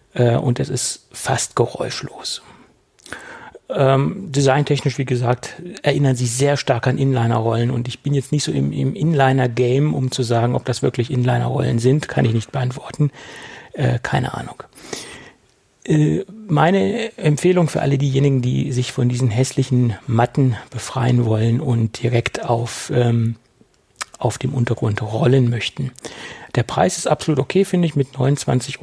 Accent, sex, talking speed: German, male, 135 wpm